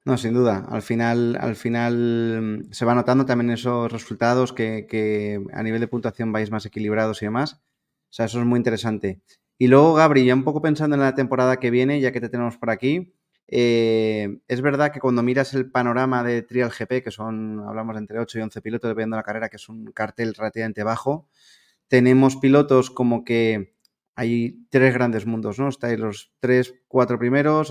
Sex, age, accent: male, 20-39, Spanish